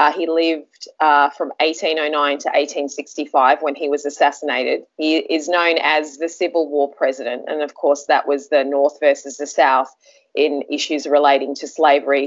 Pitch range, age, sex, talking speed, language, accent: 145-165 Hz, 20-39, female, 170 wpm, English, Australian